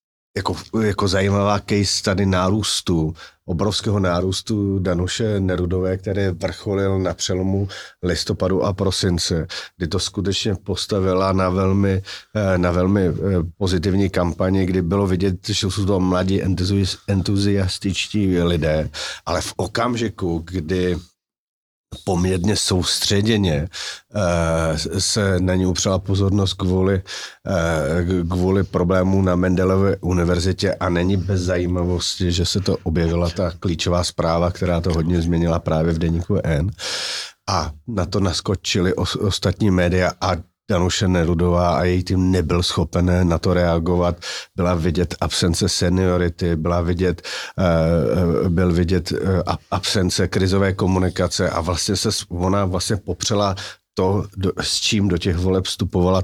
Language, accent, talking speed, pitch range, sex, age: Czech, native, 120 wpm, 90-100 Hz, male, 40-59